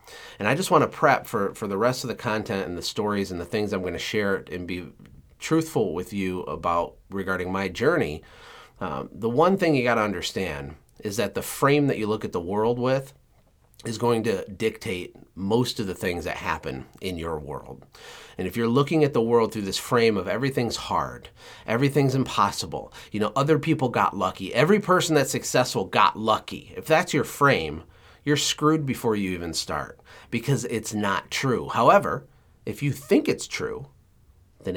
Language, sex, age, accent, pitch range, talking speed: English, male, 30-49, American, 90-130 Hz, 195 wpm